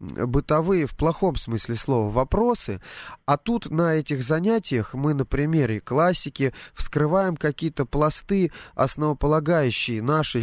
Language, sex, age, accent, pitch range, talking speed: Russian, male, 20-39, native, 115-150 Hz, 115 wpm